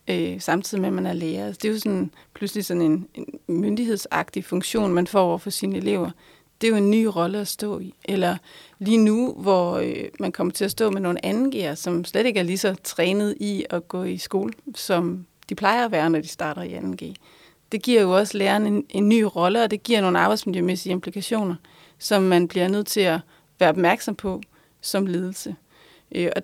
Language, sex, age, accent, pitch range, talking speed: Danish, female, 30-49, native, 175-210 Hz, 205 wpm